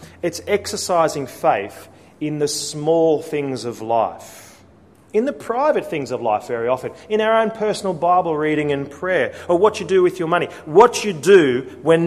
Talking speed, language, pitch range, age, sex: 180 wpm, English, 135-180 Hz, 40-59, male